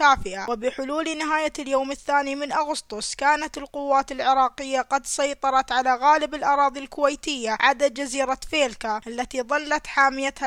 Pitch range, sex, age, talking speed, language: 265-295 Hz, female, 20-39, 120 wpm, Arabic